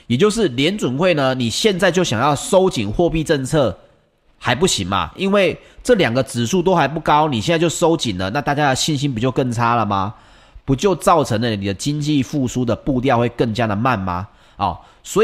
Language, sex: Chinese, male